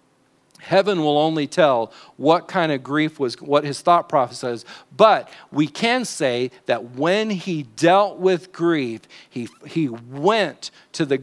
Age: 50-69